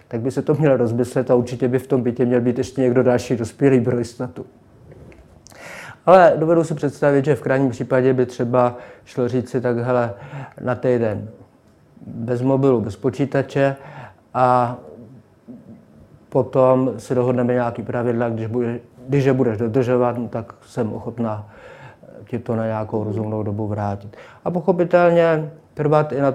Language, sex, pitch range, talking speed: Czech, male, 115-130 Hz, 155 wpm